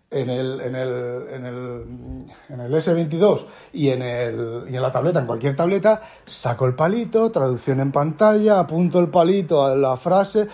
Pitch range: 130-175 Hz